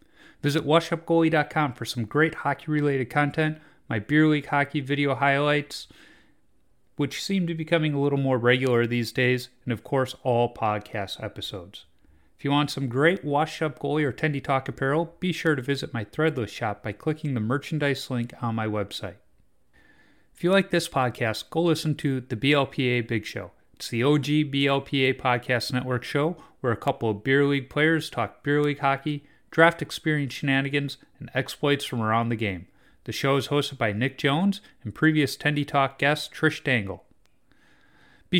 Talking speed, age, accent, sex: 170 wpm, 30-49, American, male